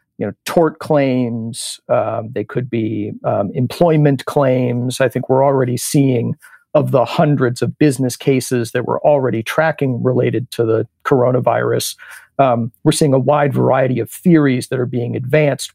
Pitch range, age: 125-150 Hz, 50-69